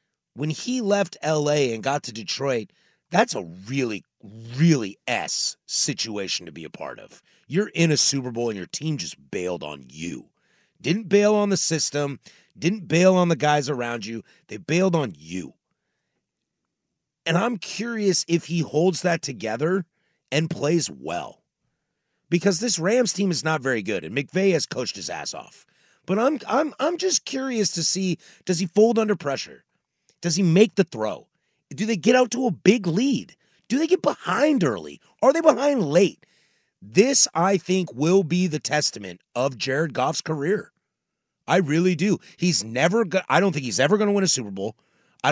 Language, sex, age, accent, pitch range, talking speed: English, male, 30-49, American, 140-200 Hz, 180 wpm